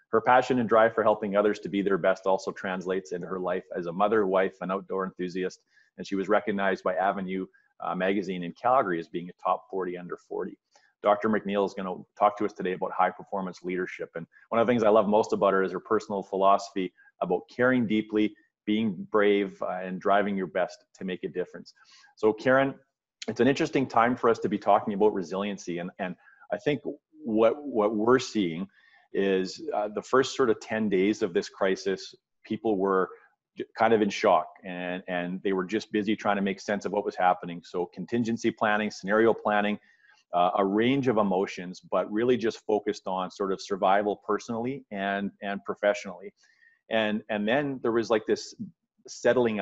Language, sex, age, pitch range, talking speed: English, male, 30-49, 95-115 Hz, 195 wpm